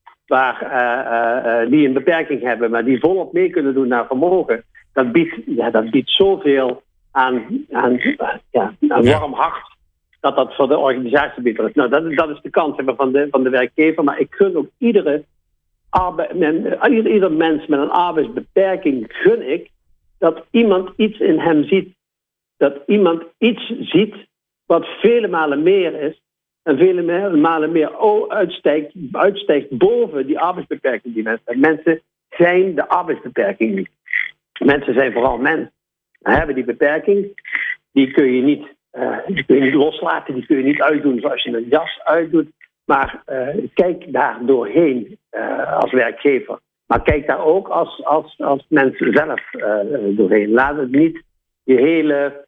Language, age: Dutch, 60-79